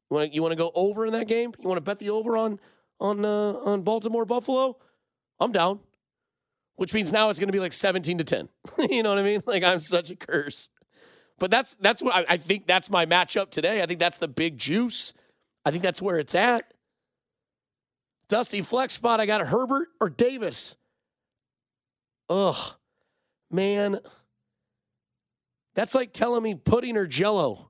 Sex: male